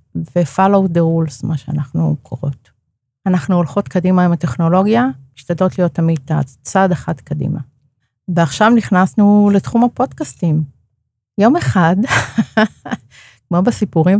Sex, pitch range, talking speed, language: female, 155-195 Hz, 105 wpm, Hebrew